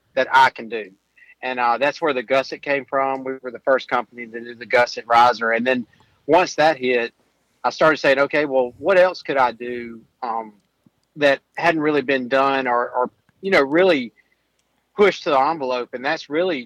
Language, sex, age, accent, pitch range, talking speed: English, male, 40-59, American, 120-140 Hz, 200 wpm